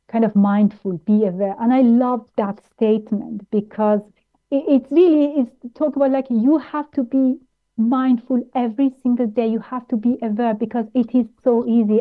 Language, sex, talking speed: English, female, 180 wpm